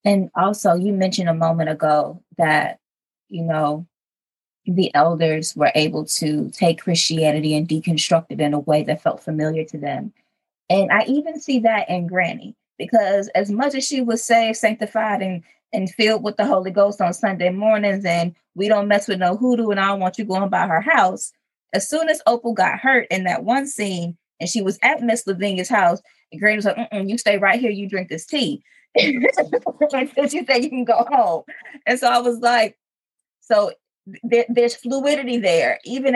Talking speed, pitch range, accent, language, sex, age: 195 wpm, 175-235 Hz, American, English, female, 20-39